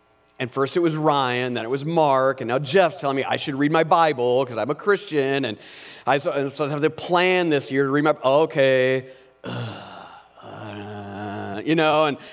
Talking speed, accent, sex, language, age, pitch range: 200 wpm, American, male, English, 40-59, 135-215 Hz